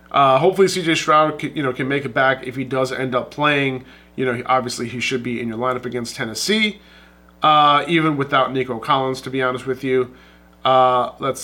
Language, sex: English, male